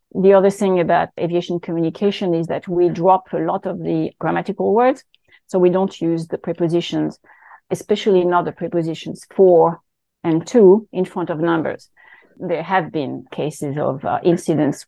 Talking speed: 160 wpm